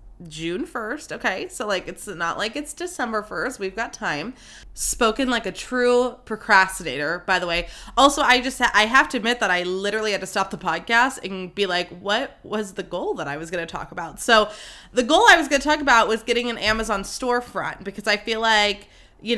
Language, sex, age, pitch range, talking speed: English, female, 20-39, 180-230 Hz, 215 wpm